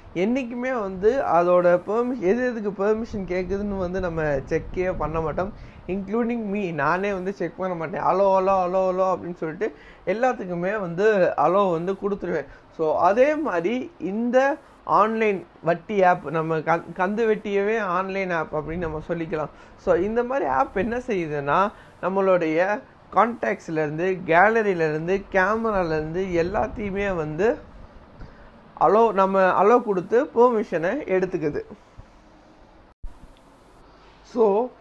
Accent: native